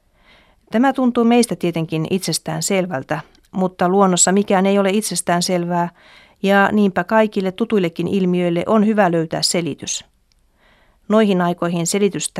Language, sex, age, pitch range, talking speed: Finnish, female, 40-59, 160-195 Hz, 120 wpm